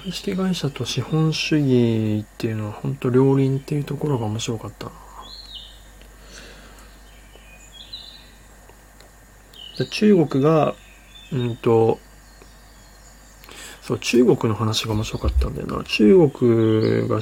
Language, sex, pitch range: Japanese, male, 110-150 Hz